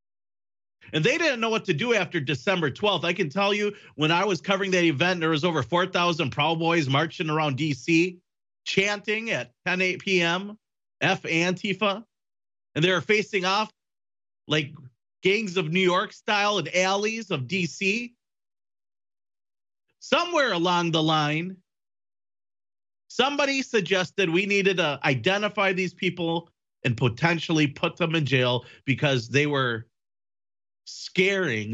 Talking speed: 135 wpm